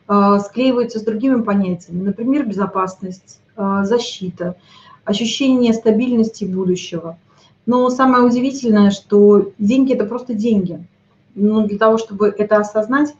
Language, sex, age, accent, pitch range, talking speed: Russian, female, 30-49, native, 195-240 Hz, 115 wpm